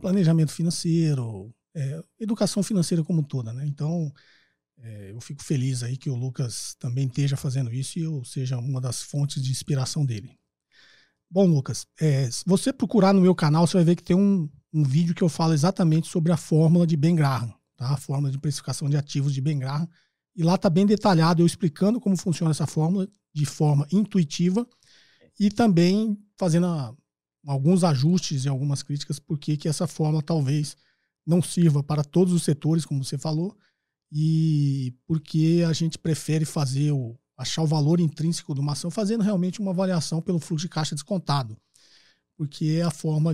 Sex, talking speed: male, 175 wpm